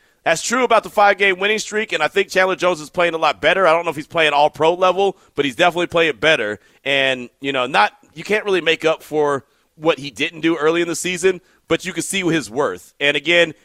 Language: English